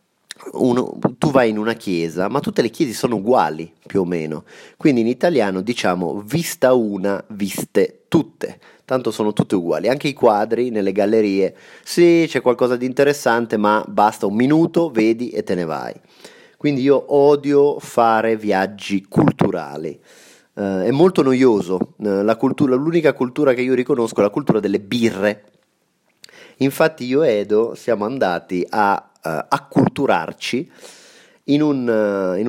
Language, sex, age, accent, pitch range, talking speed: Italian, male, 30-49, native, 105-140 Hz, 150 wpm